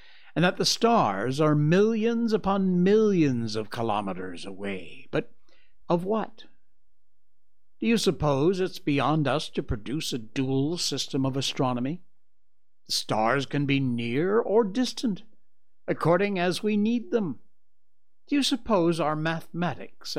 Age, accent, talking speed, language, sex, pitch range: 60-79, American, 130 wpm, English, male, 130-210 Hz